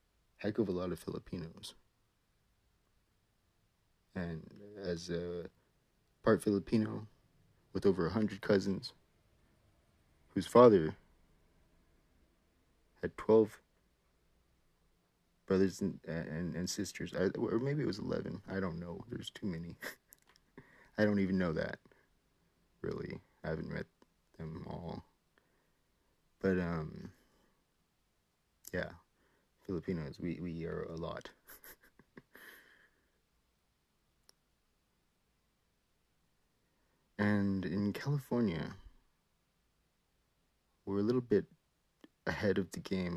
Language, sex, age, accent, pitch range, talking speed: English, male, 30-49, American, 85-115 Hz, 95 wpm